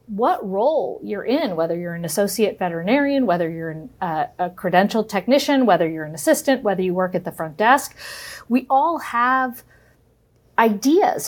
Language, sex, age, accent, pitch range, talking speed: English, female, 40-59, American, 175-240 Hz, 160 wpm